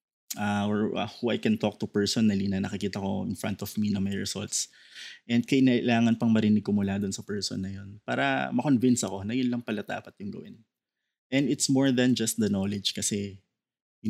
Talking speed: 210 wpm